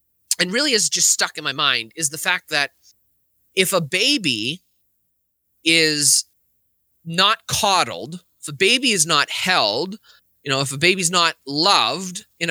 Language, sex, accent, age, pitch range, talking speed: English, male, American, 30-49, 135-190 Hz, 155 wpm